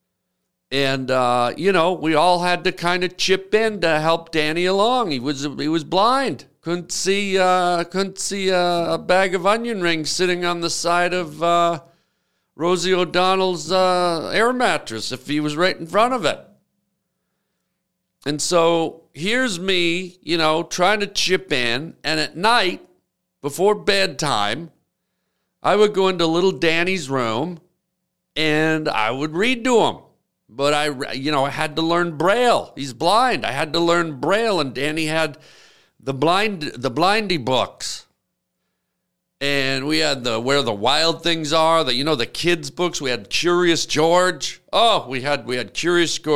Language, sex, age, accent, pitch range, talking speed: English, male, 50-69, American, 145-185 Hz, 165 wpm